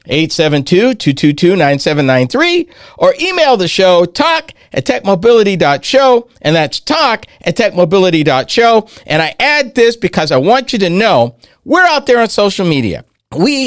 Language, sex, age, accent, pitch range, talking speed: English, male, 50-69, American, 160-235 Hz, 125 wpm